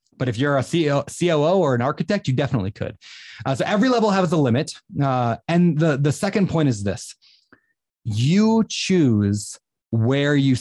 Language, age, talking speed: English, 30-49, 170 wpm